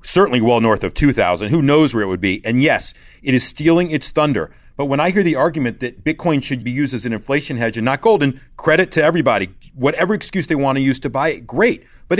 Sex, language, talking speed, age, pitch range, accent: male, English, 245 wpm, 40-59, 115-160 Hz, American